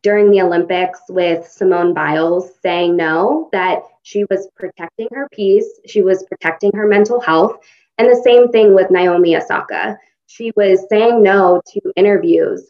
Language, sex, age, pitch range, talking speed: English, female, 20-39, 180-210 Hz, 155 wpm